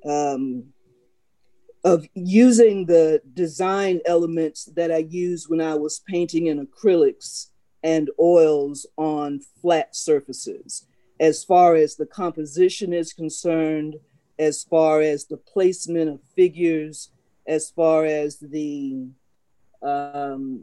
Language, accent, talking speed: English, American, 115 wpm